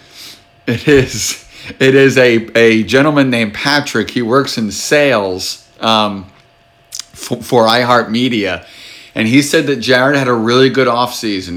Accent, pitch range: American, 105-125 Hz